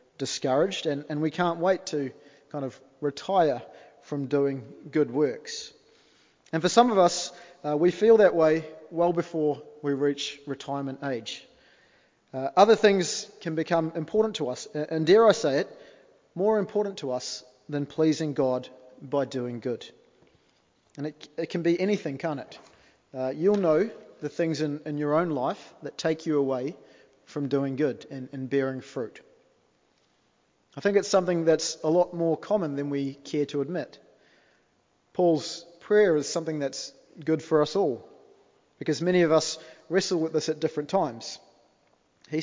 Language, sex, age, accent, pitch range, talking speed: English, male, 30-49, Australian, 145-180 Hz, 165 wpm